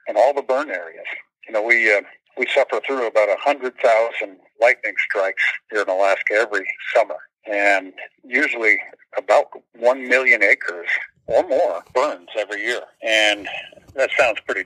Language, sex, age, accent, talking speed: English, male, 50-69, American, 145 wpm